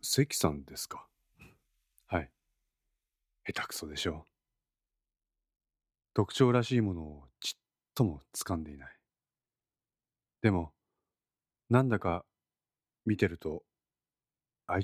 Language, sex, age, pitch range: Japanese, male, 40-59, 85-110 Hz